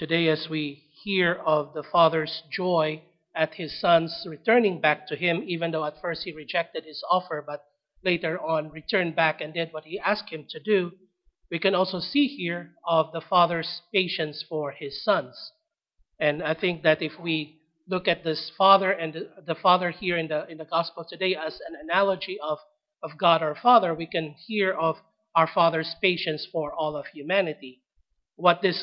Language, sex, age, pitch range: English, male, 40-59, 155-185 Hz